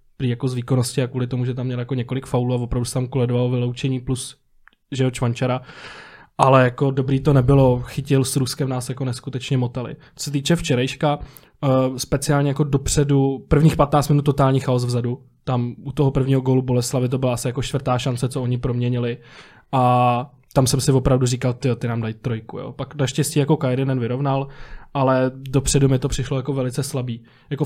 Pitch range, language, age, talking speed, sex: 125-140 Hz, Czech, 20-39, 190 wpm, male